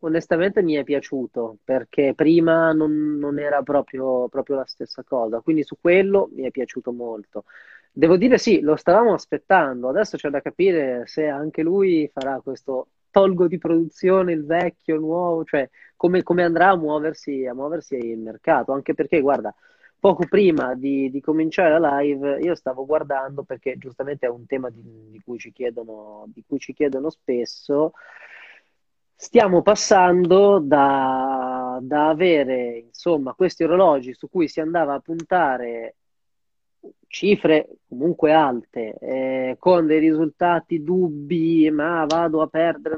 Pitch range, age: 130-170 Hz, 30-49